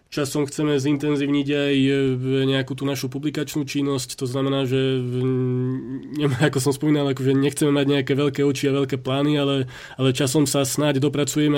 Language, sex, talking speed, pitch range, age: Slovak, male, 155 wpm, 135-145 Hz, 20-39